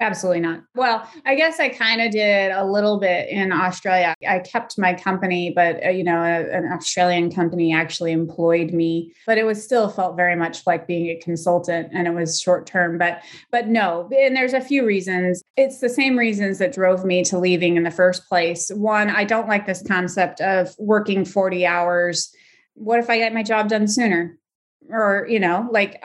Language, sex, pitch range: English, female, 180-225 Hz